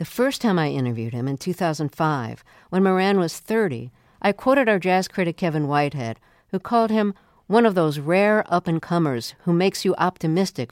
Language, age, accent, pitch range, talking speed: English, 50-69, American, 140-185 Hz, 175 wpm